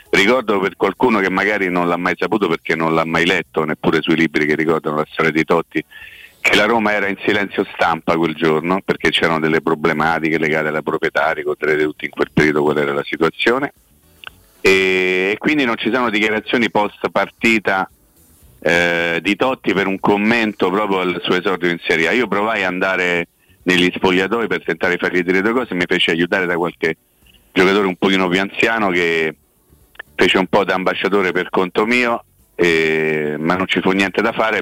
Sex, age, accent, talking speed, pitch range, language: male, 40-59, native, 190 wpm, 80-95 Hz, Italian